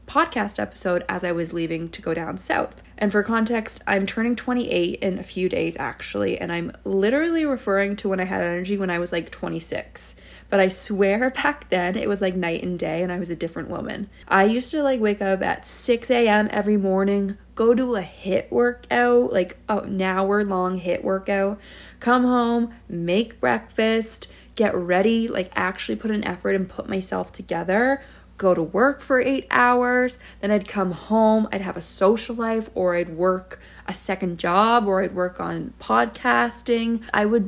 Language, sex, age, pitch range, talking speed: English, female, 20-39, 180-225 Hz, 185 wpm